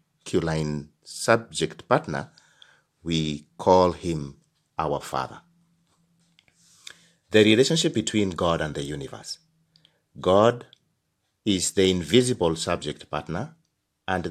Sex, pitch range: male, 80-120 Hz